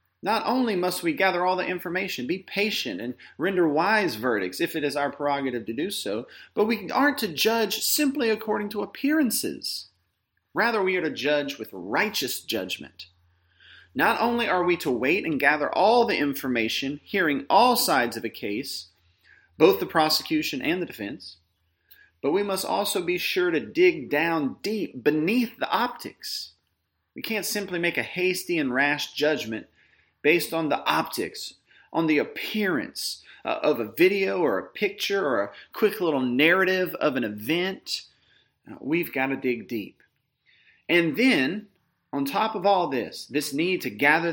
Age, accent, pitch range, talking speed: 30-49, American, 135-215 Hz, 165 wpm